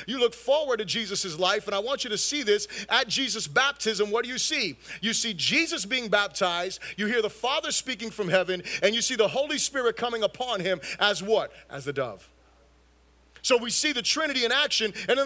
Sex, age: male, 30-49